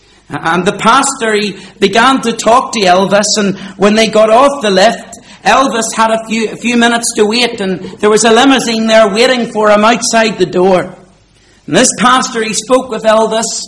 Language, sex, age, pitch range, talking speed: English, male, 50-69, 195-240 Hz, 195 wpm